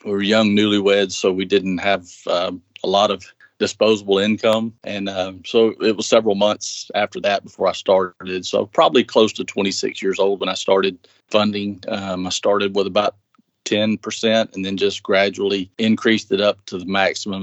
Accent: American